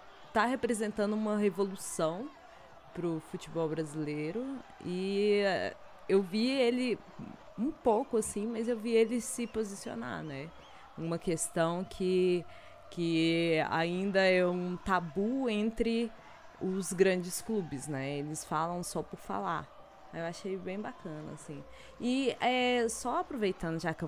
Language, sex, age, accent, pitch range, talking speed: Portuguese, female, 20-39, Brazilian, 165-225 Hz, 125 wpm